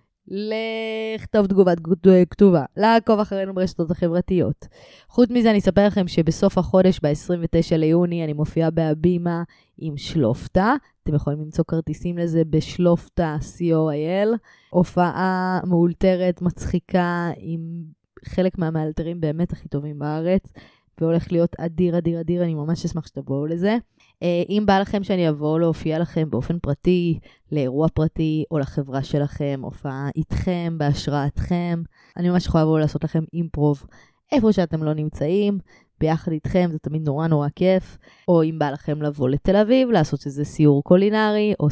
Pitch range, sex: 155-185 Hz, female